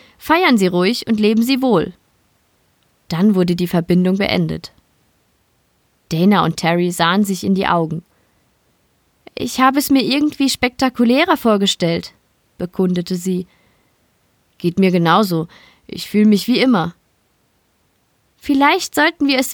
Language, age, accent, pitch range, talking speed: German, 20-39, German, 170-230 Hz, 125 wpm